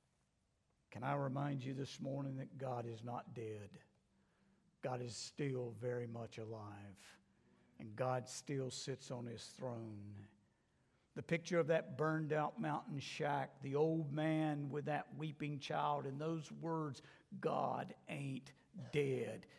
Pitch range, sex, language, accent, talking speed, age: 115-145 Hz, male, English, American, 140 wpm, 60-79